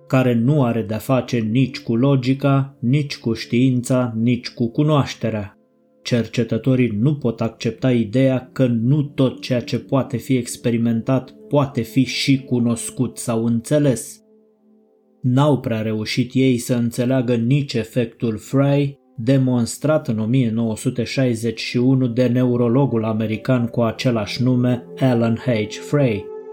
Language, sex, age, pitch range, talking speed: Romanian, male, 20-39, 115-135 Hz, 120 wpm